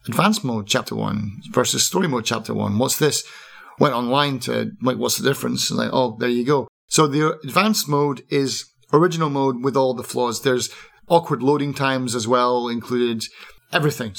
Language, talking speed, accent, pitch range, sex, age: English, 180 wpm, British, 115-145 Hz, male, 30-49